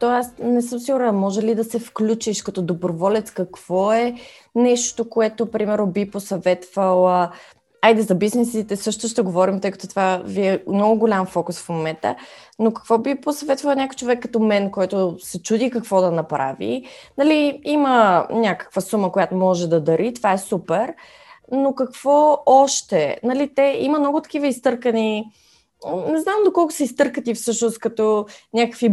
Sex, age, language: female, 20-39, Bulgarian